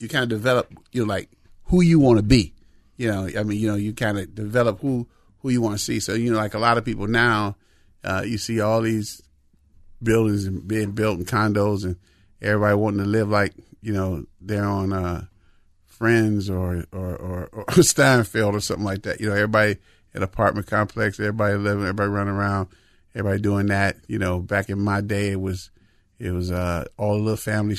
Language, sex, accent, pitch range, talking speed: English, male, American, 95-110 Hz, 205 wpm